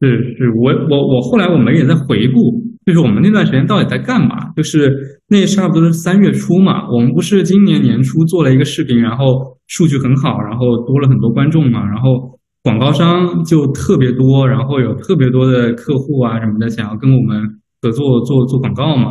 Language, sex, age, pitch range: Chinese, male, 20-39, 120-140 Hz